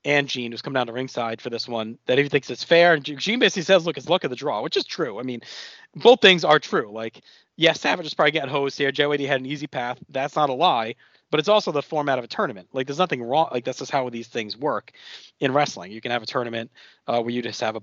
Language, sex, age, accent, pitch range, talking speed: English, male, 30-49, American, 125-165 Hz, 285 wpm